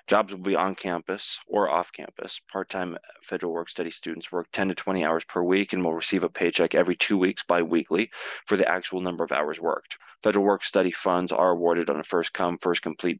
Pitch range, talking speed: 90-100 Hz, 200 wpm